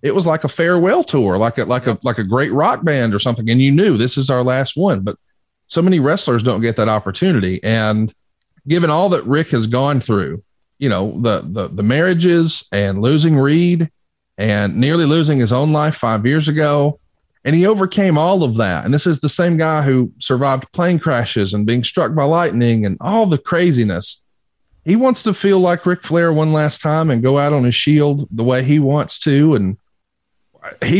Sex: male